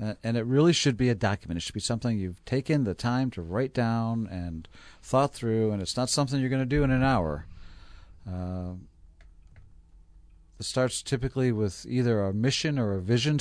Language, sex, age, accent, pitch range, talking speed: English, male, 40-59, American, 90-125 Hz, 190 wpm